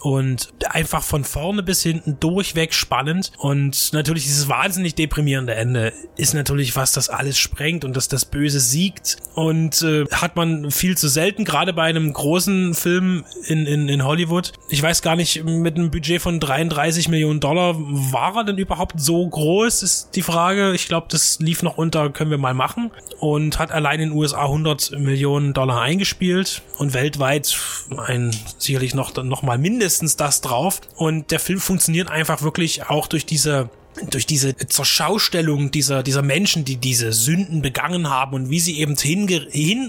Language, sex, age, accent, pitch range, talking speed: German, male, 20-39, German, 140-170 Hz, 175 wpm